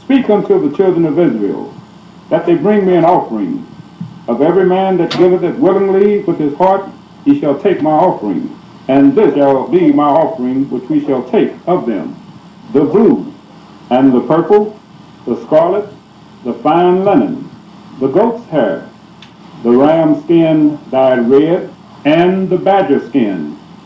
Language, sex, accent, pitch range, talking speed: English, male, American, 135-195 Hz, 155 wpm